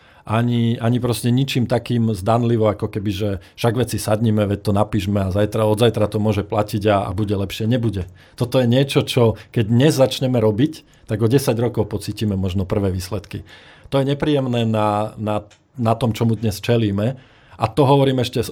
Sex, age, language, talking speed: male, 40-59, Slovak, 185 wpm